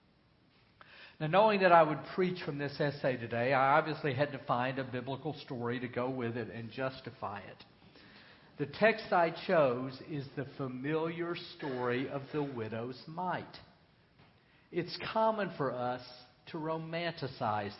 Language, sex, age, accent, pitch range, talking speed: English, male, 50-69, American, 135-165 Hz, 145 wpm